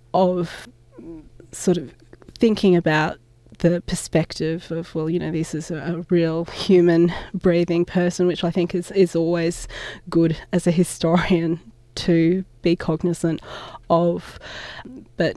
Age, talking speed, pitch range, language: 20-39, 130 wpm, 160-180 Hz, English